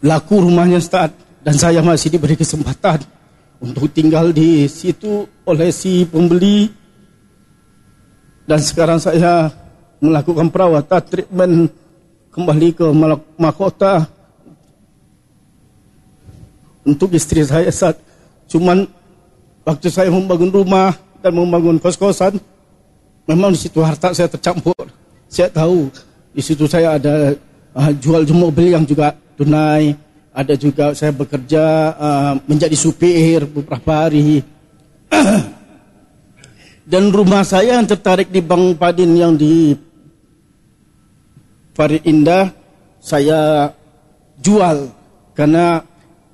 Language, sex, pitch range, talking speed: Indonesian, male, 155-175 Hz, 100 wpm